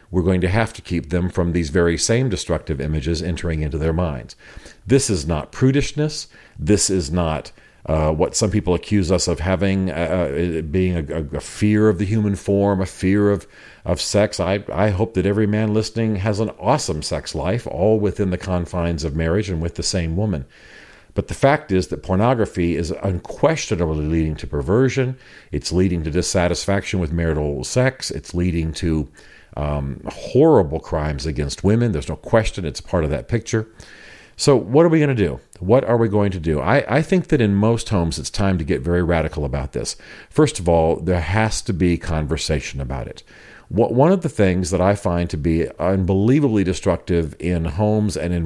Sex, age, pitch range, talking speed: male, 50-69, 85-110 Hz, 195 wpm